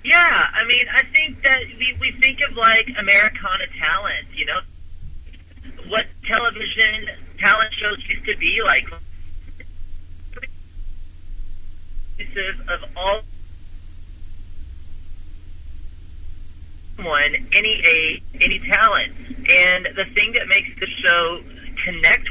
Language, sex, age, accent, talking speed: English, male, 40-59, American, 100 wpm